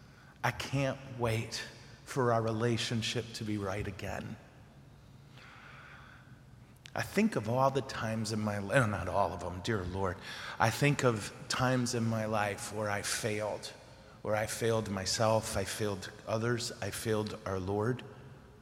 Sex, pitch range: male, 110-130 Hz